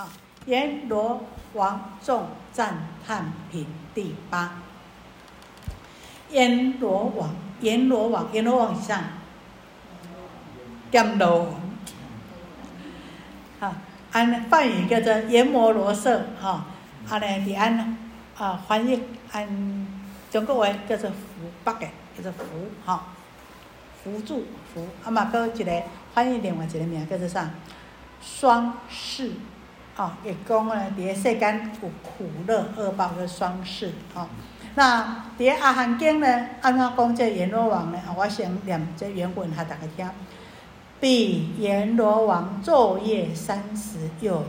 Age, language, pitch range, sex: 60-79, Chinese, 180-230 Hz, female